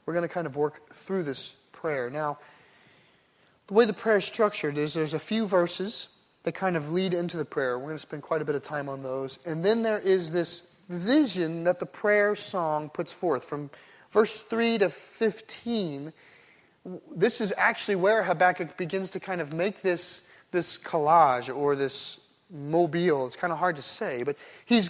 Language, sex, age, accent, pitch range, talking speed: English, male, 30-49, American, 165-220 Hz, 195 wpm